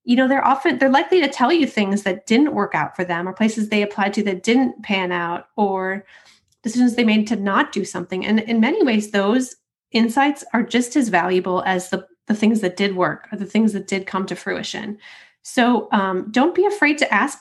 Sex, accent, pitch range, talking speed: female, American, 185-240 Hz, 225 wpm